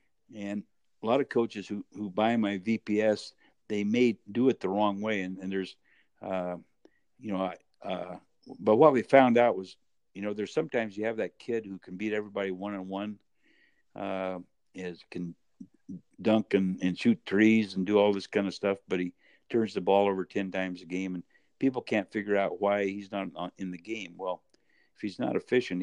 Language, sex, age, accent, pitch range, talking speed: English, male, 60-79, American, 95-105 Hz, 195 wpm